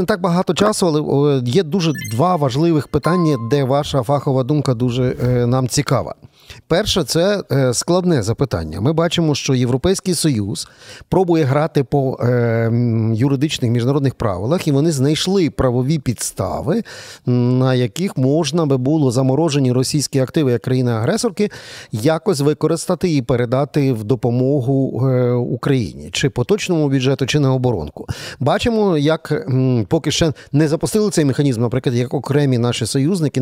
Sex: male